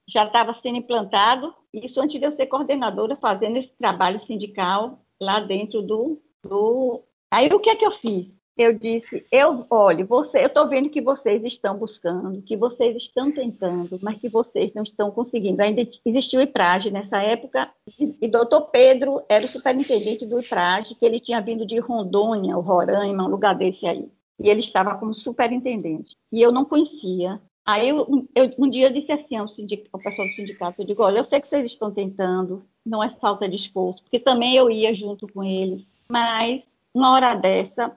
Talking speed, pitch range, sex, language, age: 185 wpm, 205-260 Hz, female, Portuguese, 50-69